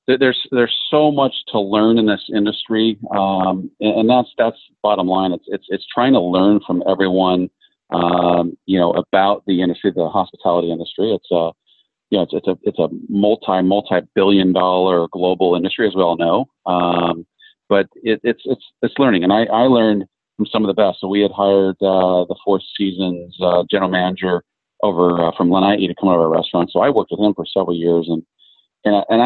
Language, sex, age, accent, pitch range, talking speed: English, male, 40-59, American, 90-105 Hz, 200 wpm